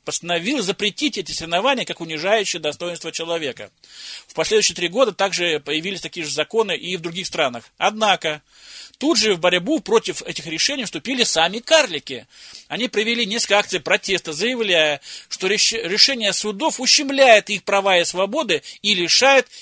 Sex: male